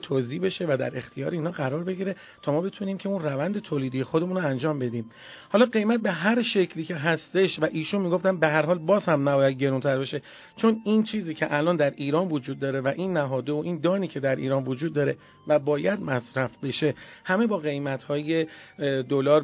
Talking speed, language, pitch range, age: 200 wpm, Persian, 140-180 Hz, 40-59